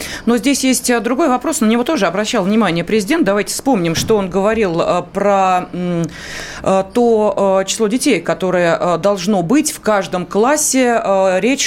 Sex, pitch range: female, 195-260 Hz